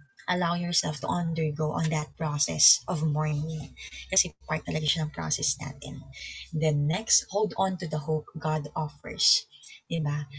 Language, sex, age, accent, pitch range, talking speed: English, female, 20-39, Filipino, 150-175 Hz, 160 wpm